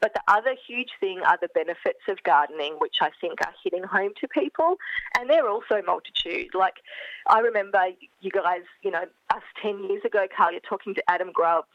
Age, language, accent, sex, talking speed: 20-39, English, Australian, female, 200 wpm